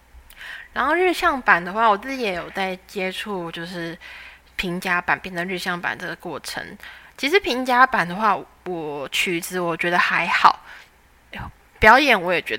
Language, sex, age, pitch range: Chinese, female, 20-39, 170-225 Hz